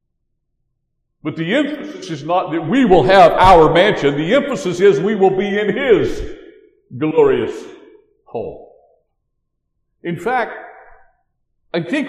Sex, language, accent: male, English, American